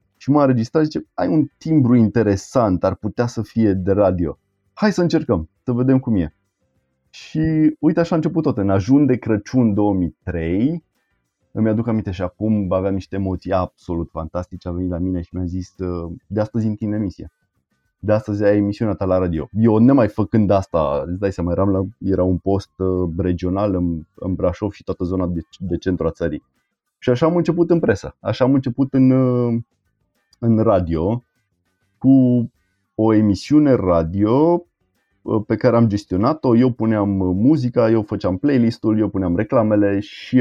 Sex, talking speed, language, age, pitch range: male, 170 wpm, Romanian, 20-39, 95-120 Hz